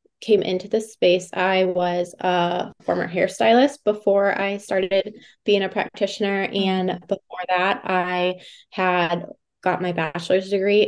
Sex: female